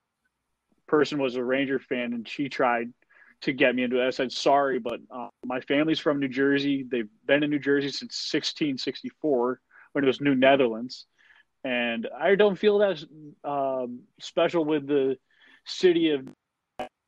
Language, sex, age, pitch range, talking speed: English, male, 20-39, 125-150 Hz, 165 wpm